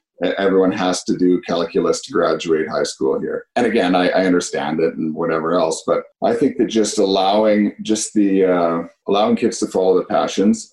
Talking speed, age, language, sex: 190 wpm, 40-59, English, male